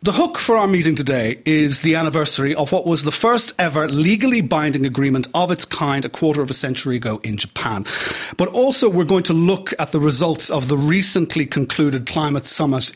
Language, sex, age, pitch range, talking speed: English, male, 40-59, 135-175 Hz, 205 wpm